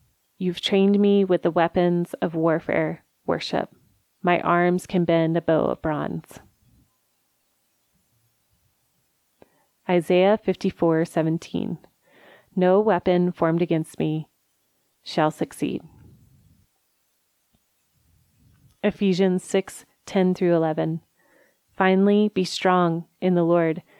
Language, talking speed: English, 95 wpm